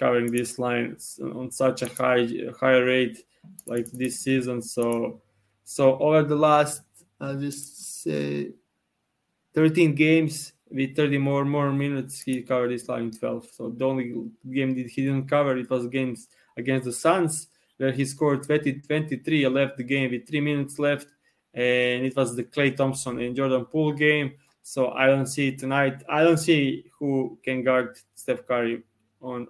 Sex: male